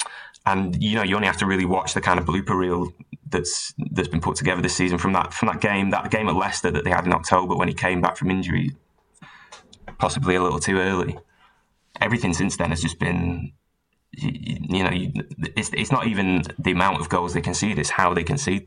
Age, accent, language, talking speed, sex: 10-29, British, English, 225 wpm, male